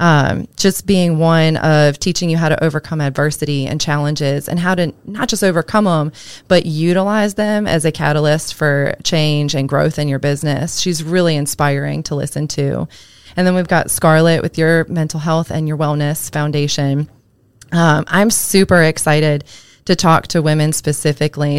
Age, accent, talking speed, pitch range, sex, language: 20-39, American, 170 wpm, 145-170 Hz, female, English